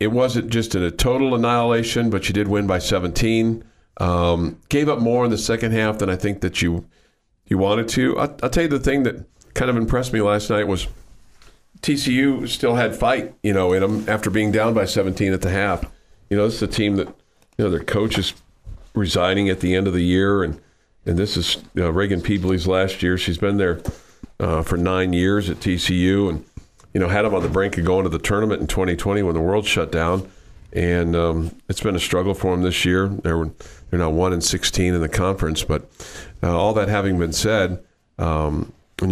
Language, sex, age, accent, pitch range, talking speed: English, male, 50-69, American, 85-105 Hz, 220 wpm